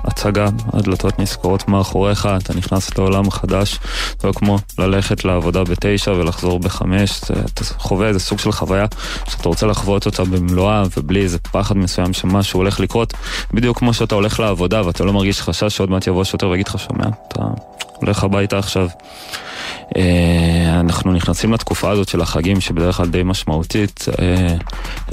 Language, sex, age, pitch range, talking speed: Hebrew, male, 20-39, 85-100 Hz, 155 wpm